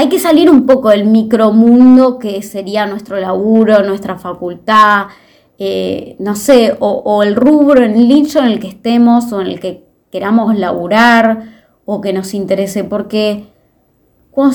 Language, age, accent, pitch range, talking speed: Spanish, 20-39, Argentinian, 200-275 Hz, 155 wpm